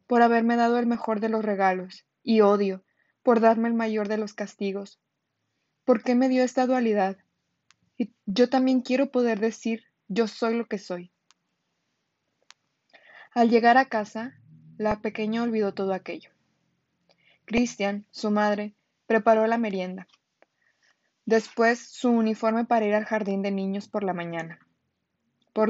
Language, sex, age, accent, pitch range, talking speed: Spanish, female, 20-39, Mexican, 205-235 Hz, 145 wpm